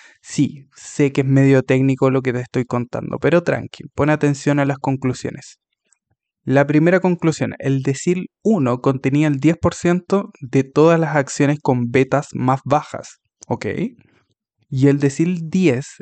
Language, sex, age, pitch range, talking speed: Spanish, male, 20-39, 130-150 Hz, 150 wpm